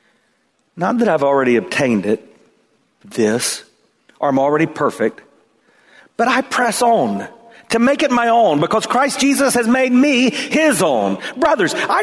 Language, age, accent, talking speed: English, 50-69, American, 150 wpm